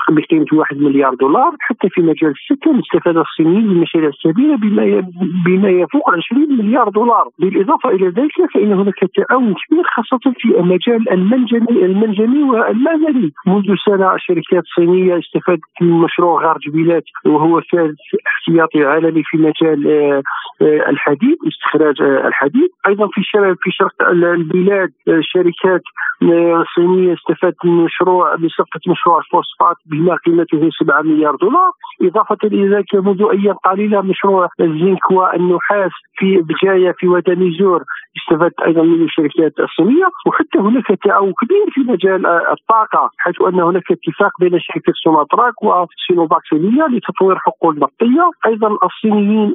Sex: male